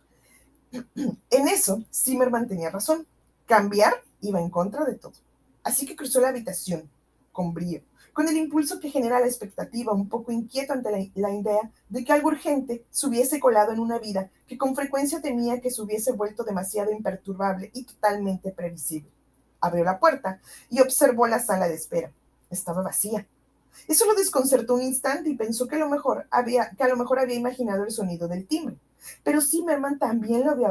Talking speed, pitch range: 180 wpm, 195-270 Hz